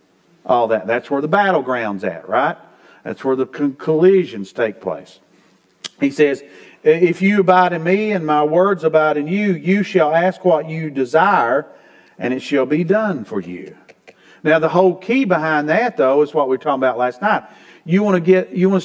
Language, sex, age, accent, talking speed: English, male, 50-69, American, 195 wpm